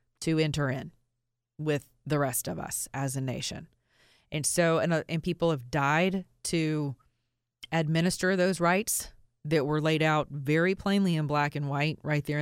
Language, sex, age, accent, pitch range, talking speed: English, female, 30-49, American, 120-160 Hz, 165 wpm